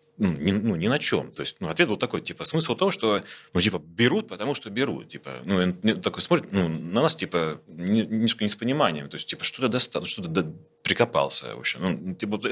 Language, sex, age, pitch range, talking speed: Russian, male, 30-49, 85-110 Hz, 210 wpm